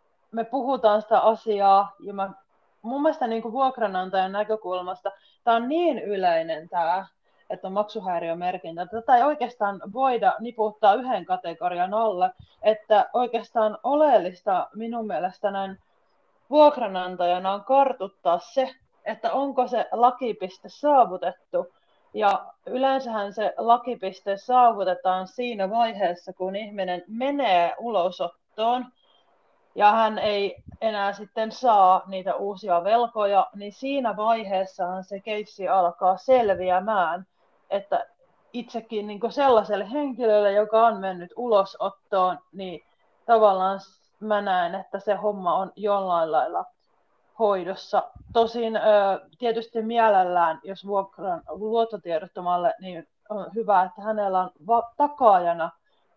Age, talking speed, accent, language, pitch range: 30-49, 110 wpm, native, Finnish, 185-230 Hz